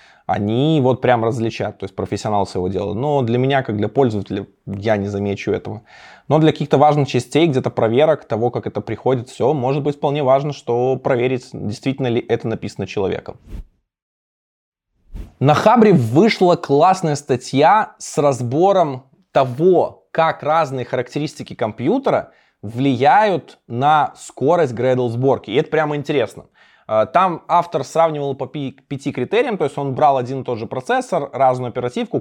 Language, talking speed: Russian, 150 wpm